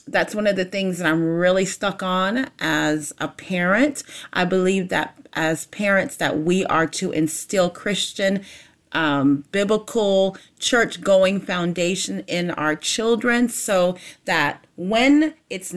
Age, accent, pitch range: 30-49, American, 170-230 Hz